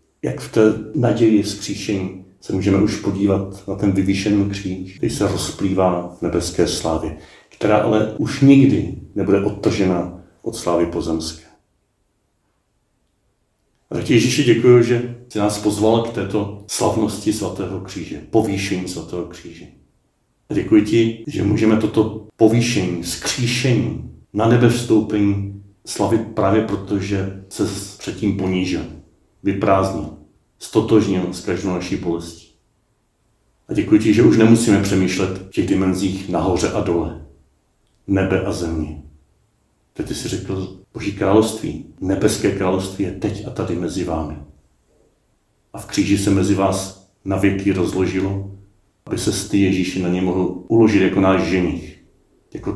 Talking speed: 135 wpm